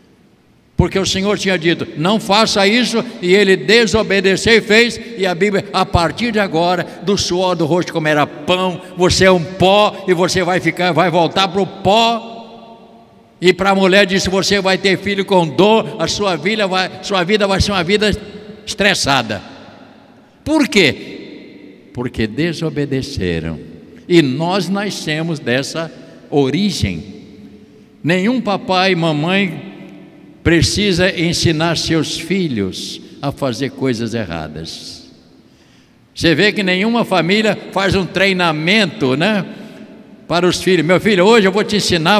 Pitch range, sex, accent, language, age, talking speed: 165-205 Hz, male, Brazilian, Portuguese, 60-79, 140 wpm